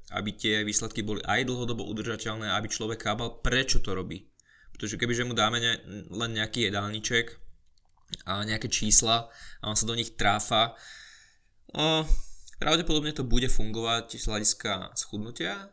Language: Slovak